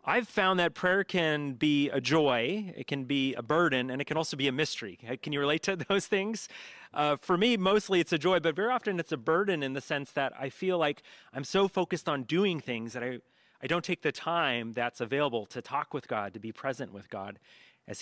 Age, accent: 30-49, American